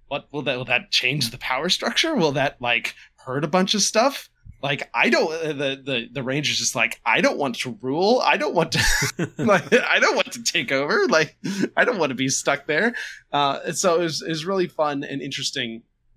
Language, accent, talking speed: English, American, 225 wpm